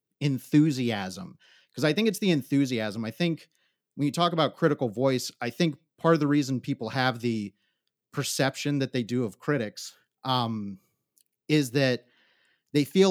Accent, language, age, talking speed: American, English, 30-49, 160 wpm